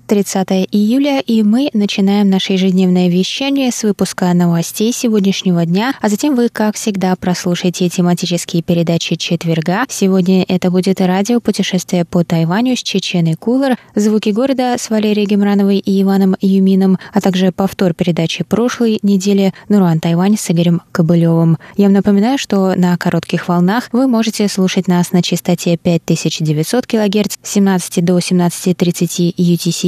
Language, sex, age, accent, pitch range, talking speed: Russian, female, 20-39, native, 170-210 Hz, 140 wpm